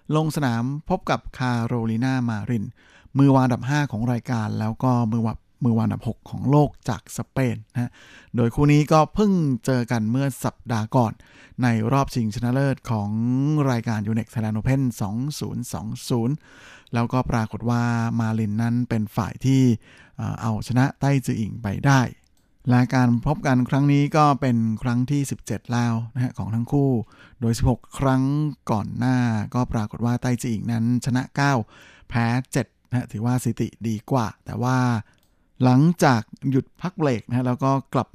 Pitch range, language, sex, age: 115-130 Hz, Thai, male, 60-79